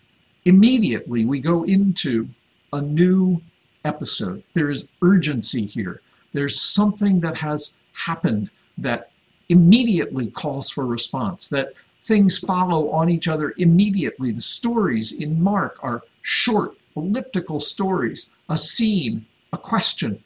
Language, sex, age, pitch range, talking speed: English, male, 50-69, 150-195 Hz, 120 wpm